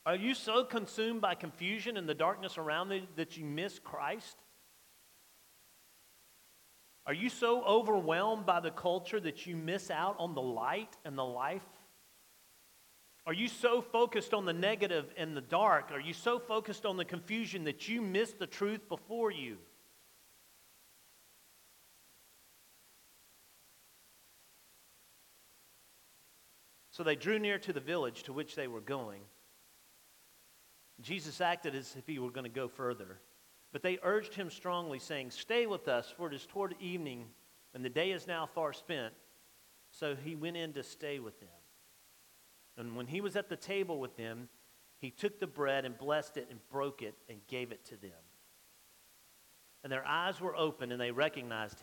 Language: English